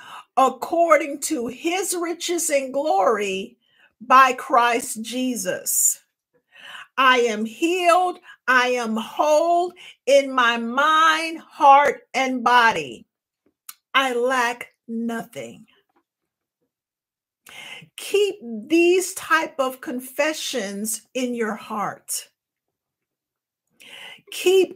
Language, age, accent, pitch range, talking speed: English, 50-69, American, 240-330 Hz, 80 wpm